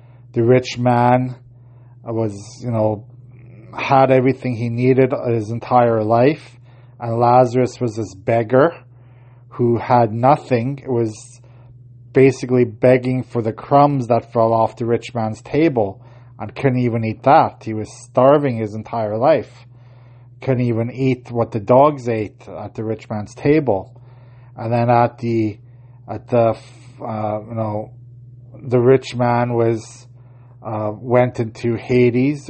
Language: English